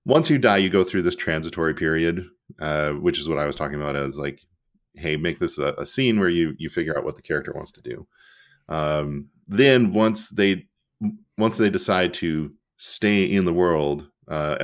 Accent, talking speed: American, 200 wpm